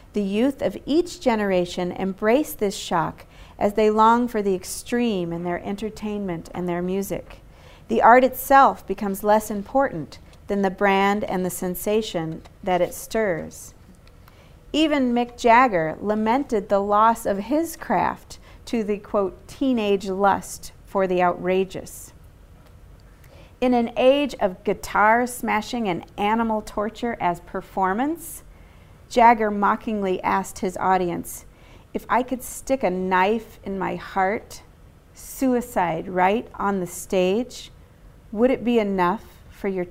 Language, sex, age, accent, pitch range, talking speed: English, female, 40-59, American, 185-230 Hz, 130 wpm